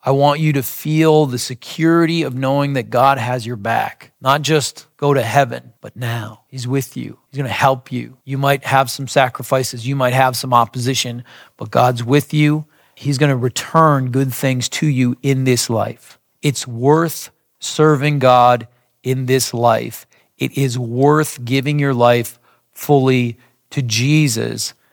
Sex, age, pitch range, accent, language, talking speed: male, 40-59, 125-145 Hz, American, English, 170 wpm